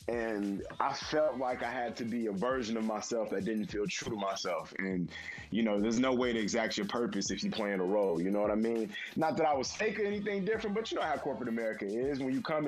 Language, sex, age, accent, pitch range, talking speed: English, male, 20-39, American, 105-135 Hz, 265 wpm